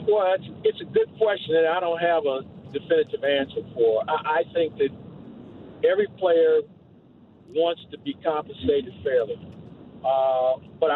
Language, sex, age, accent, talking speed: English, male, 50-69, American, 135 wpm